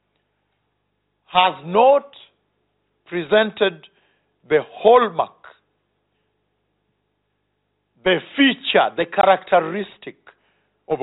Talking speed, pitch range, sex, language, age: 55 wpm, 170-225 Hz, male, English, 50-69